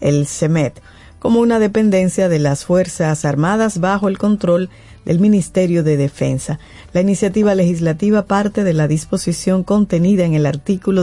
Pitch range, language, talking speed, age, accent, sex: 160-205 Hz, Spanish, 145 wpm, 40-59, American, female